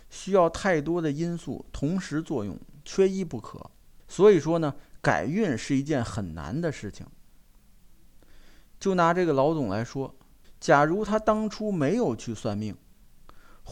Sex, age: male, 50-69